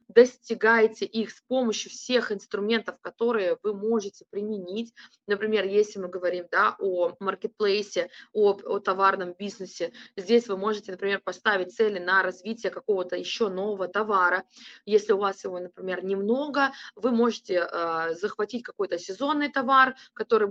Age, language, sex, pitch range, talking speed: 20-39, Russian, female, 190-235 Hz, 140 wpm